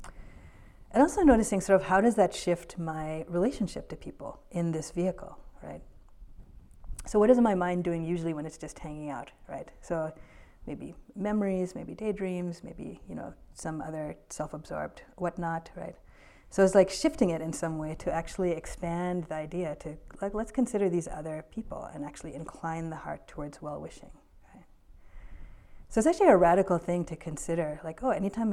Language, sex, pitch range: English, female, 155-185 Hz